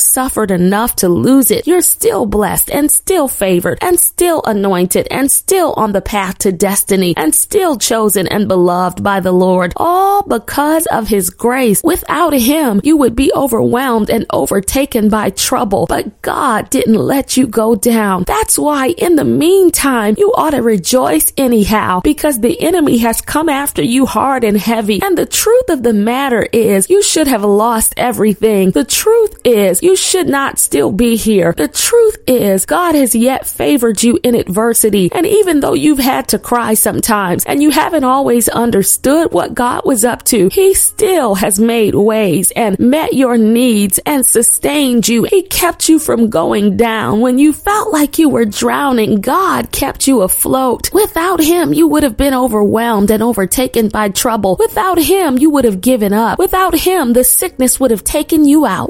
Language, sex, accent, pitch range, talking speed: English, female, American, 215-315 Hz, 180 wpm